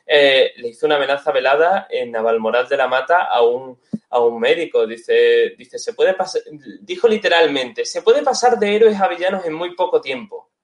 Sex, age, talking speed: male, 20-39, 190 wpm